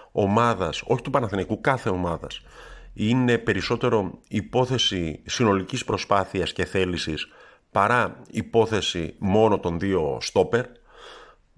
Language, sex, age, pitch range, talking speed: Greek, male, 50-69, 95-120 Hz, 100 wpm